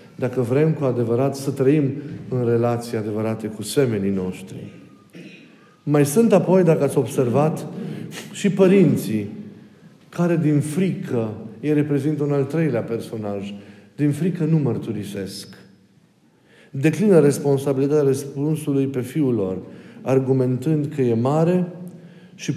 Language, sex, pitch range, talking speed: Romanian, male, 105-145 Hz, 115 wpm